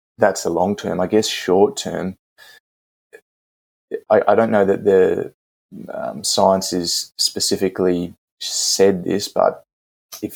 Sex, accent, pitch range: male, Australian, 90-105 Hz